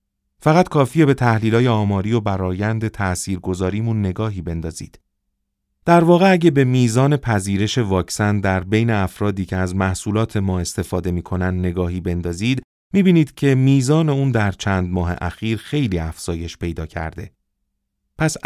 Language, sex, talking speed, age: Persian, male, 135 wpm, 40-59